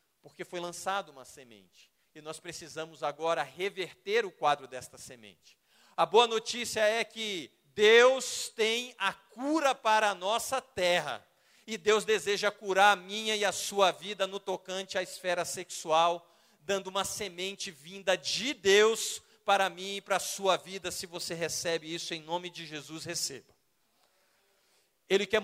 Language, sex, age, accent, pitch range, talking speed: Portuguese, male, 40-59, Brazilian, 175-230 Hz, 155 wpm